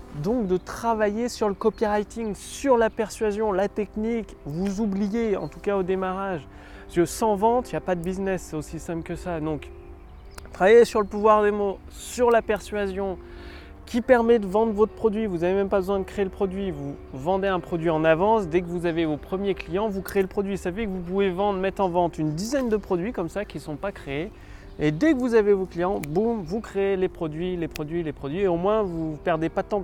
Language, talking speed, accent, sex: French, 240 wpm, French, male